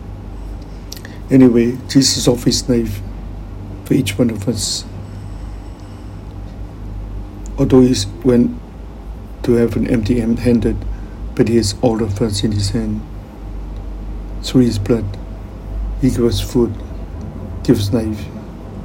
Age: 60-79